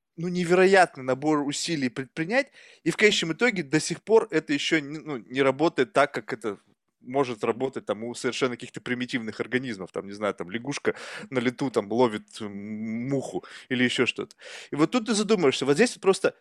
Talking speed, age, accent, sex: 180 wpm, 20-39, native, male